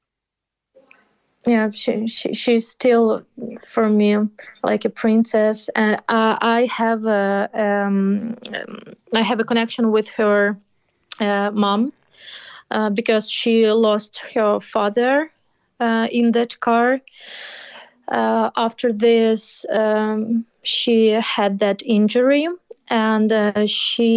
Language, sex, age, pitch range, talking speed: Danish, female, 30-49, 210-230 Hz, 110 wpm